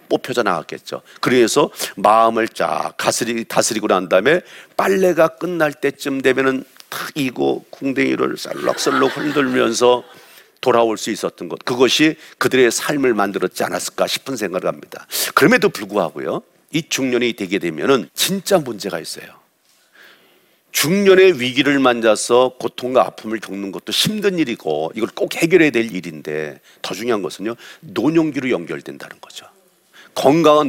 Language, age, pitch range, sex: Korean, 50-69, 110-160 Hz, male